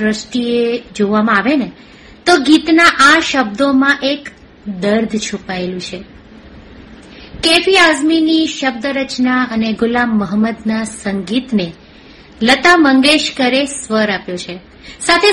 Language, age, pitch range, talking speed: Gujarati, 60-79, 220-305 Hz, 100 wpm